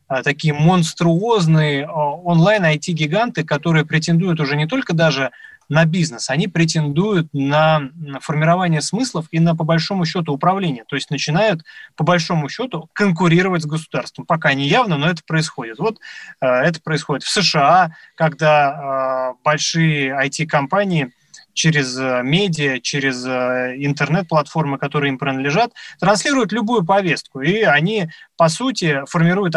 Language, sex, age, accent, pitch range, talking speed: Russian, male, 20-39, native, 145-180 Hz, 120 wpm